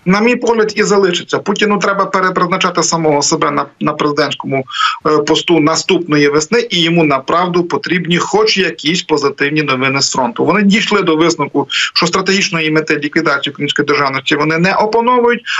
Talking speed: 145 wpm